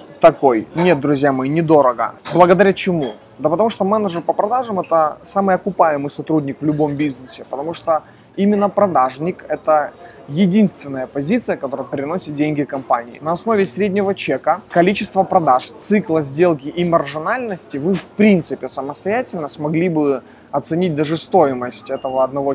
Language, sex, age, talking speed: Russian, male, 20-39, 140 wpm